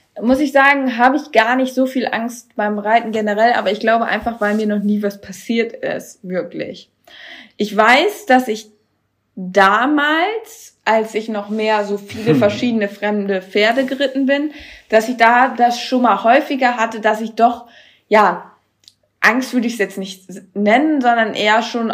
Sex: female